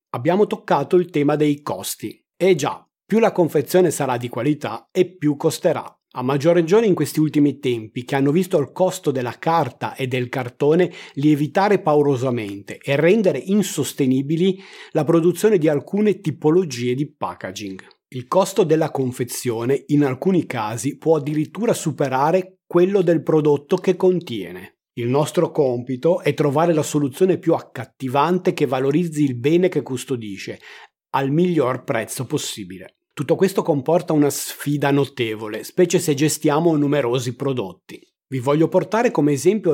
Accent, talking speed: native, 145 wpm